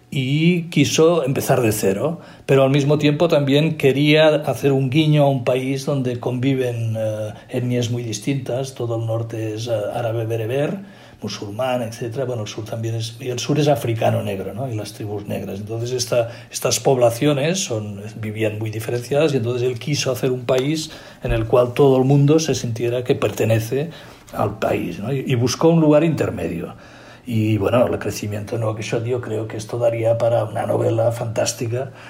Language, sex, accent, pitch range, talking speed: Spanish, male, Spanish, 110-135 Hz, 185 wpm